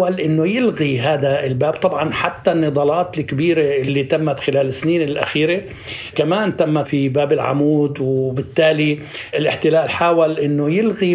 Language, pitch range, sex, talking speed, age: Arabic, 140-170 Hz, male, 125 wpm, 60-79